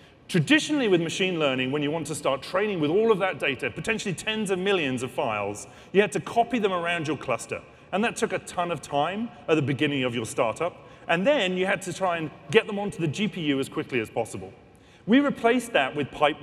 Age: 30-49